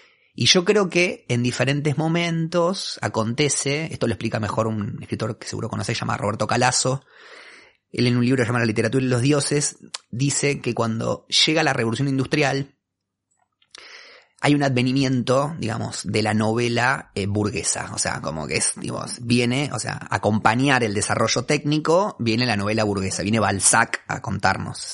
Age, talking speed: 30-49, 160 wpm